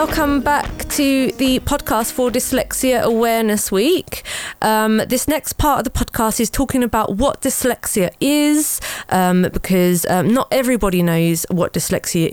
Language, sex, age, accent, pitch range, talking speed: English, female, 20-39, British, 170-220 Hz, 145 wpm